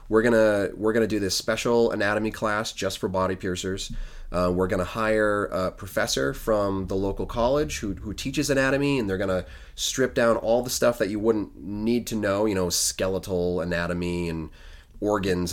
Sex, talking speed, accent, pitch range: male, 180 wpm, American, 90-110 Hz